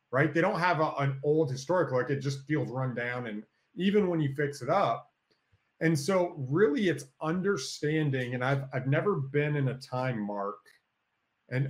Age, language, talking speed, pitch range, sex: 30-49, English, 185 wpm, 125-155 Hz, male